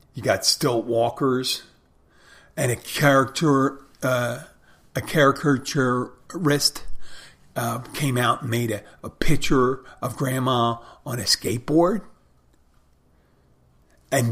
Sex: male